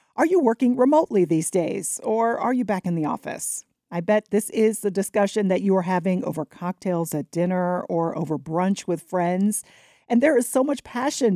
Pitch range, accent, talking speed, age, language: 175-235 Hz, American, 200 wpm, 40-59, English